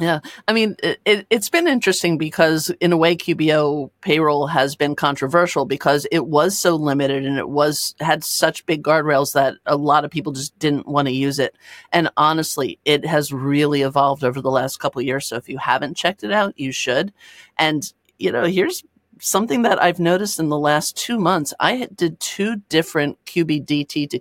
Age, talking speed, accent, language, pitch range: 40-59, 195 wpm, American, English, 140-175 Hz